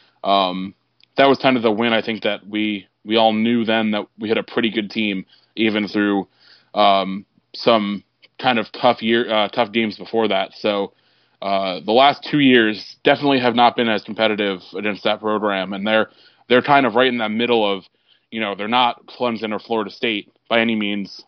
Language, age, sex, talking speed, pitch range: English, 20-39, male, 200 wpm, 100-115 Hz